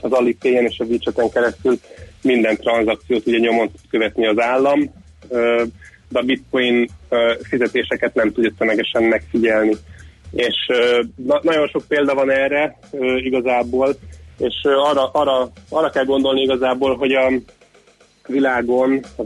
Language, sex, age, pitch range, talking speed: Hungarian, male, 30-49, 110-130 Hz, 125 wpm